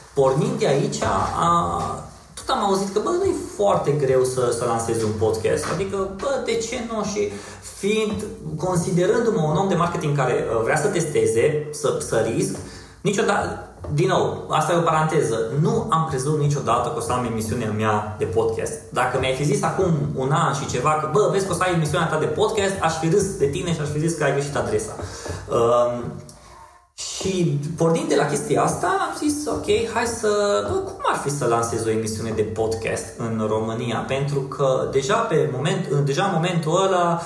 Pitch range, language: 120-195 Hz, Romanian